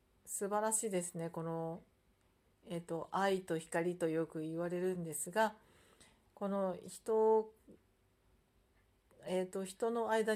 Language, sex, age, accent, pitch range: Japanese, female, 40-59, native, 165-210 Hz